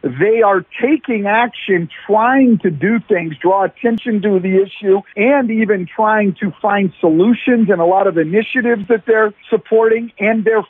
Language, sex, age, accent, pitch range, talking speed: English, male, 50-69, American, 185-240 Hz, 165 wpm